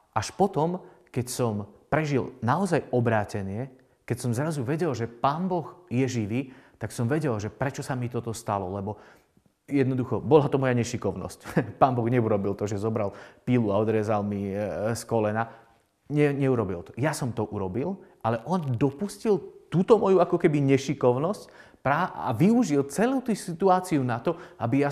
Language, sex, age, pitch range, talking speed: Slovak, male, 30-49, 115-150 Hz, 160 wpm